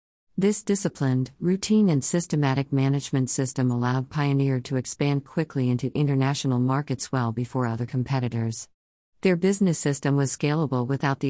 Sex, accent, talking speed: female, American, 140 wpm